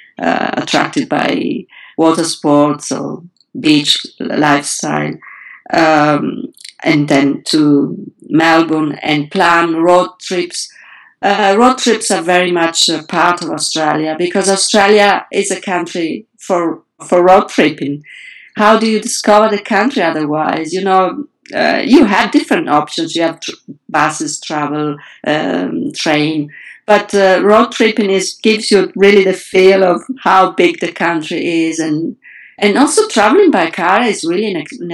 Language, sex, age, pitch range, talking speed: English, female, 50-69, 155-220 Hz, 145 wpm